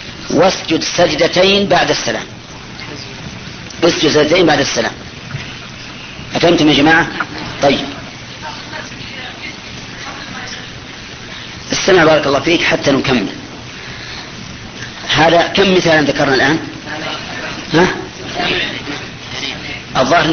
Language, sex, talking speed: Arabic, female, 70 wpm